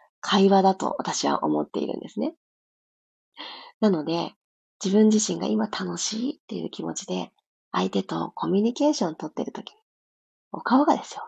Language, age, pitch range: Japanese, 30-49, 175-270 Hz